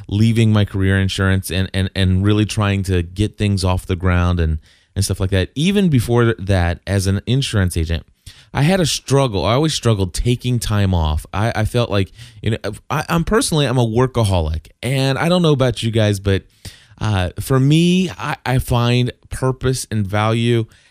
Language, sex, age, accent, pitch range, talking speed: English, male, 20-39, American, 95-120 Hz, 190 wpm